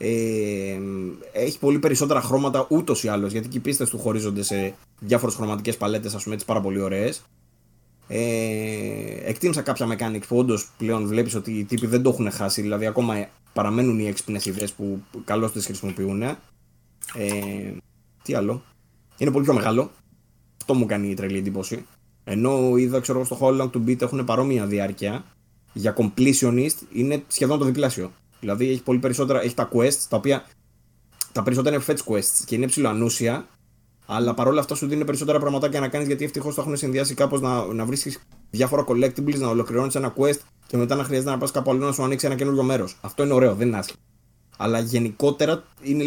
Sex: male